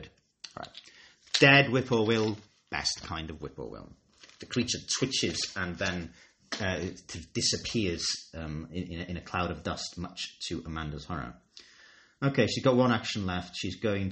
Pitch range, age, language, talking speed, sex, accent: 85-110 Hz, 30-49, English, 160 wpm, male, British